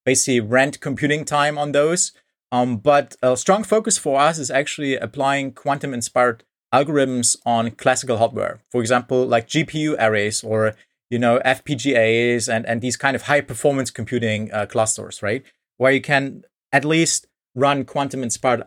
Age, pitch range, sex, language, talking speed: 30-49, 120-140 Hz, male, English, 150 wpm